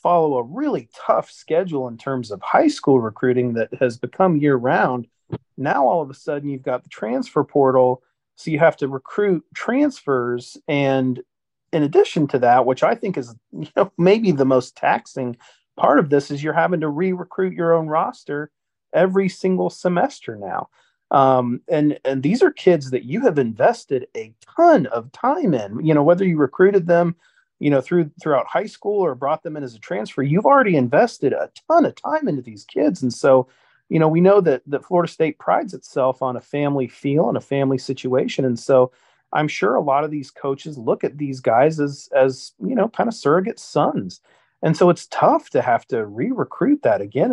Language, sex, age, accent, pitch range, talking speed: English, male, 40-59, American, 130-180 Hz, 200 wpm